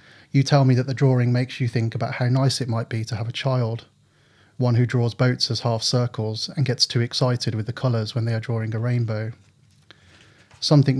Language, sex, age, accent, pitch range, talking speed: English, male, 30-49, British, 115-135 Hz, 215 wpm